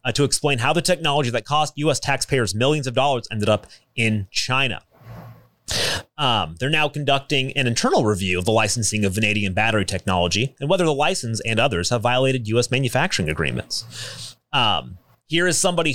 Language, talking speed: English, 175 wpm